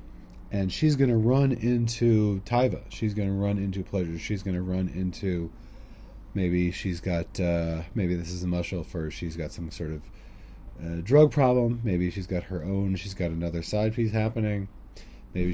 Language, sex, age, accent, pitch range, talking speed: English, male, 30-49, American, 85-110 Hz, 190 wpm